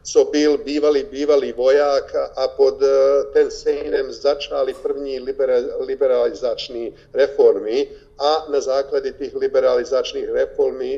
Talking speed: 120 wpm